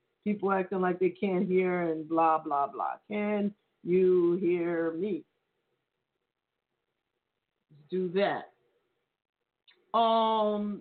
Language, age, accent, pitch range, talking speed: English, 50-69, American, 185-250 Hz, 100 wpm